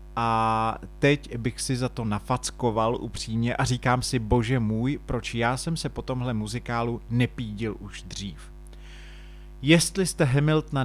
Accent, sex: native, male